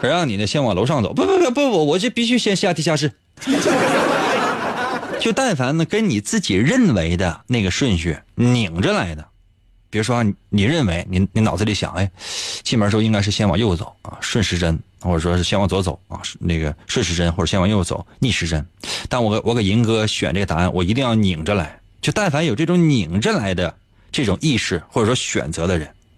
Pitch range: 95-140 Hz